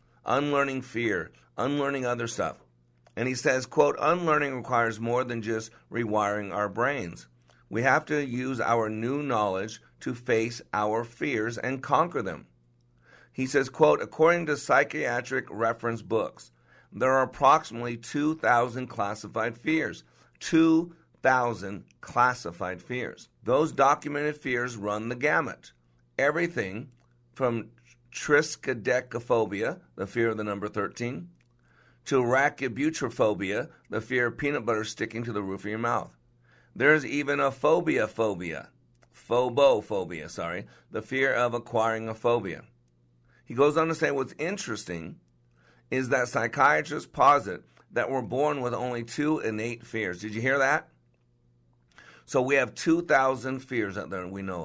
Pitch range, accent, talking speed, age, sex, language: 95-130 Hz, American, 135 wpm, 50-69, male, English